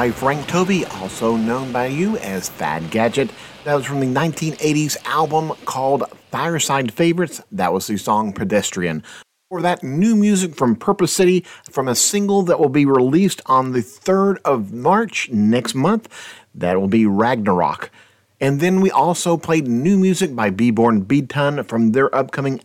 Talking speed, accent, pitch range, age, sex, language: 165 wpm, American, 110-155 Hz, 50-69, male, English